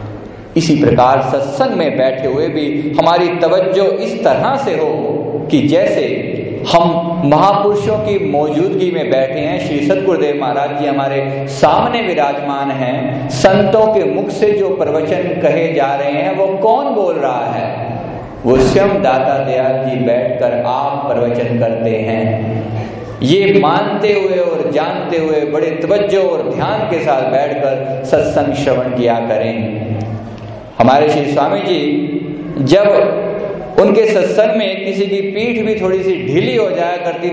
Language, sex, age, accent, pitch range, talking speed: Hindi, male, 50-69, native, 130-185 Hz, 145 wpm